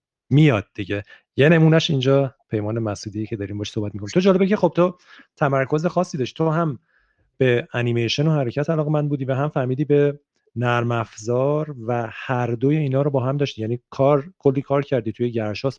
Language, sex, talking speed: Persian, male, 185 wpm